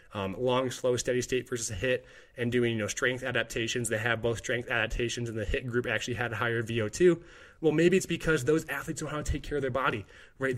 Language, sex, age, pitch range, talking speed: English, male, 20-39, 120-145 Hz, 240 wpm